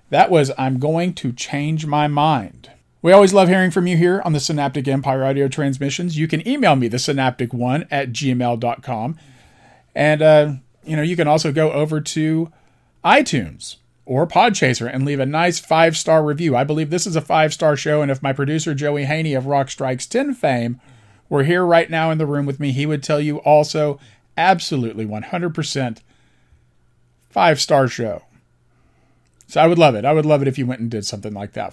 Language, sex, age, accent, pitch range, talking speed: English, male, 40-59, American, 125-160 Hz, 185 wpm